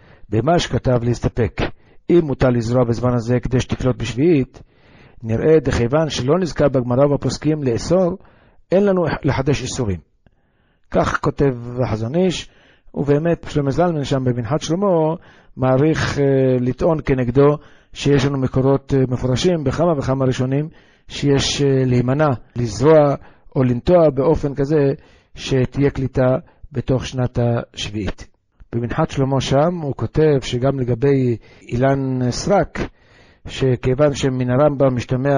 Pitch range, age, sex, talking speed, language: 125-150 Hz, 50-69, male, 115 wpm, Hebrew